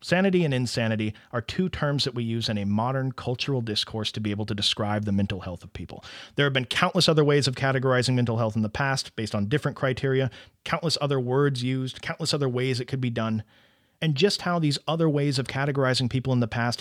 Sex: male